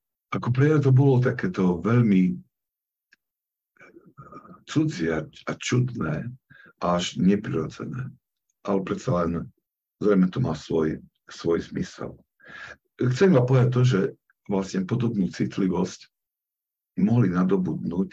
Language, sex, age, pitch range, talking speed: Slovak, male, 60-79, 90-120 Hz, 105 wpm